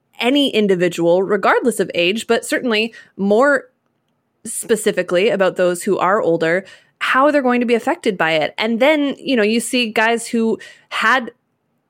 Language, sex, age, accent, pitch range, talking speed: English, female, 20-39, American, 195-250 Hz, 155 wpm